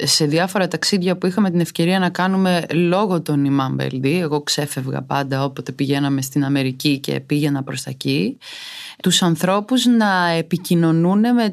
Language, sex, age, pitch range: Greek, female, 20-39, 150-185 Hz